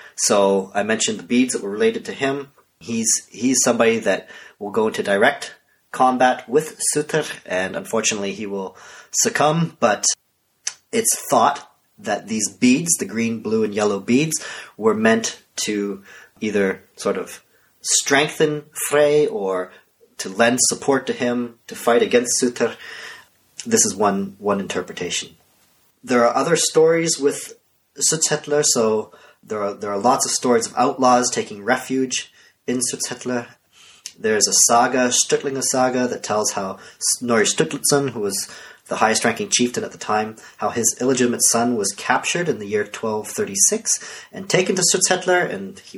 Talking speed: 150 wpm